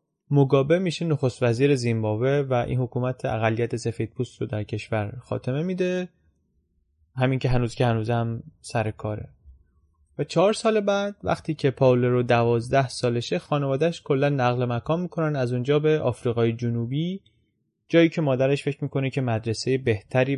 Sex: male